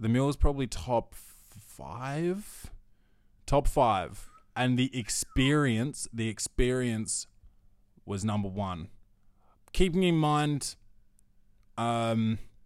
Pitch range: 100-120 Hz